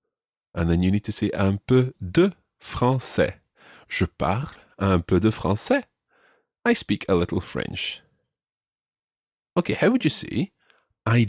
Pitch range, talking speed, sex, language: 85-130 Hz, 145 wpm, male, English